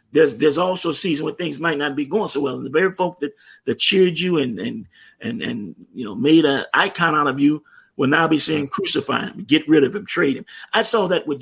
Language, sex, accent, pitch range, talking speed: English, male, American, 145-205 Hz, 255 wpm